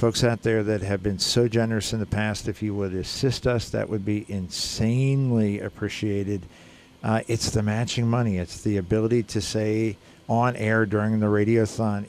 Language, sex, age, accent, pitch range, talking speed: English, male, 50-69, American, 100-115 Hz, 180 wpm